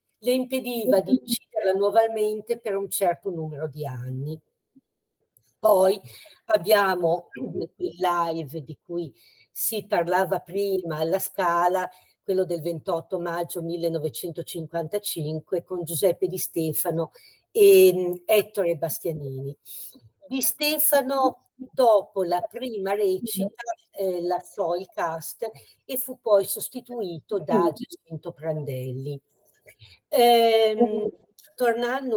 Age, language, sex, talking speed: 50-69, Italian, female, 100 wpm